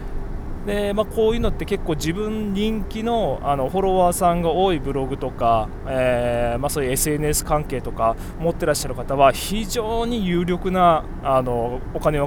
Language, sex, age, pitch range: Japanese, male, 20-39, 130-180 Hz